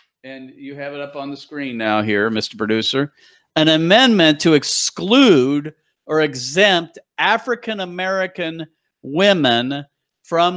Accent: American